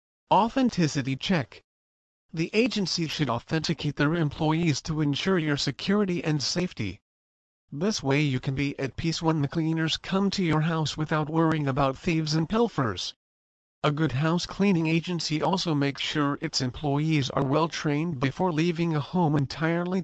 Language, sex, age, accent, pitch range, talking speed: English, male, 40-59, American, 140-170 Hz, 155 wpm